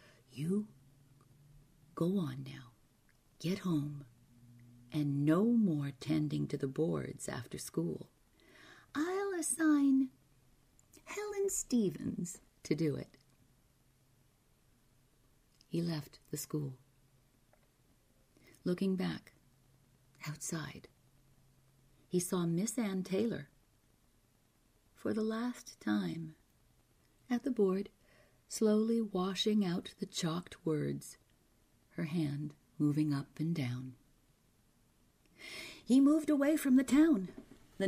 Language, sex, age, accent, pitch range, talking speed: English, female, 40-59, American, 130-220 Hz, 95 wpm